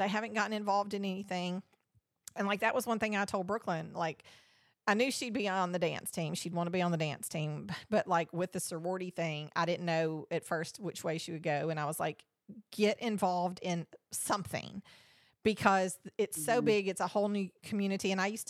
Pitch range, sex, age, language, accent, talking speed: 170-205 Hz, female, 40-59, English, American, 220 wpm